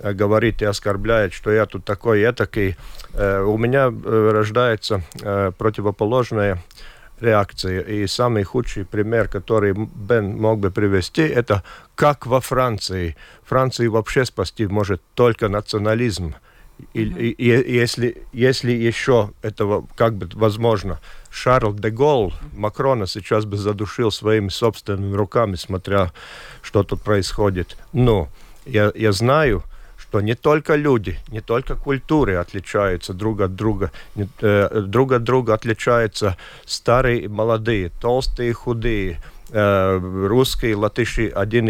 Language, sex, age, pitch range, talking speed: Russian, male, 40-59, 100-120 Hz, 125 wpm